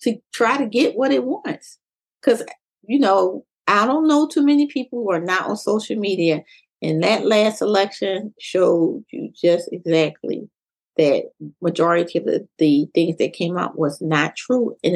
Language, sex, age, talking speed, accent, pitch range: English, female, 30-49, 175 wpm, American, 165-200 Hz